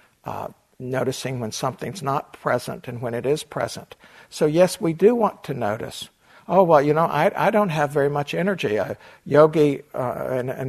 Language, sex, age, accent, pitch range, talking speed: English, male, 60-79, American, 135-180 Hz, 185 wpm